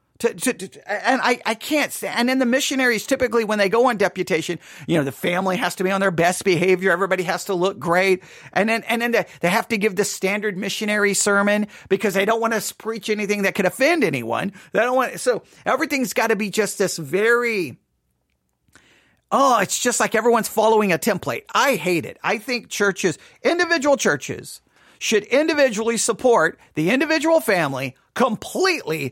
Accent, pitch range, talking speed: American, 185-245 Hz, 190 wpm